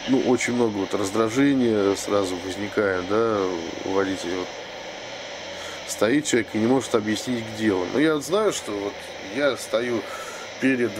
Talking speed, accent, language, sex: 155 wpm, native, Russian, male